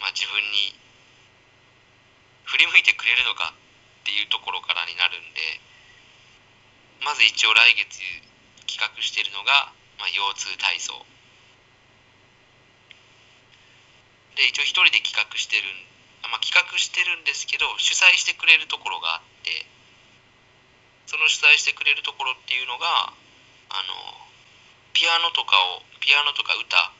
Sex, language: male, Japanese